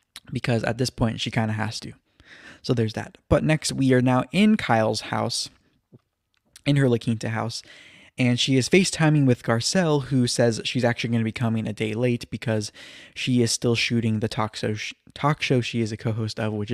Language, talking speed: English, 200 wpm